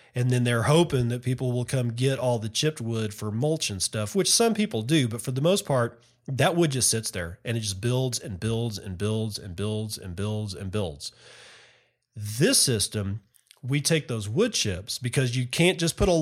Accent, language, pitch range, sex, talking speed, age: American, English, 115-145 Hz, male, 220 wpm, 40-59